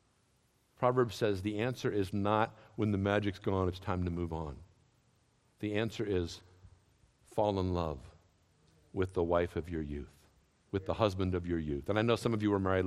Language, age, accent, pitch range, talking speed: English, 50-69, American, 100-165 Hz, 190 wpm